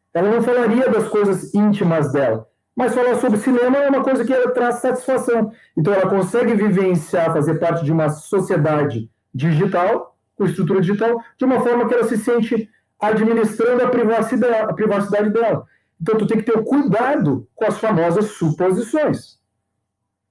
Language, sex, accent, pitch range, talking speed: Portuguese, male, Brazilian, 165-230 Hz, 155 wpm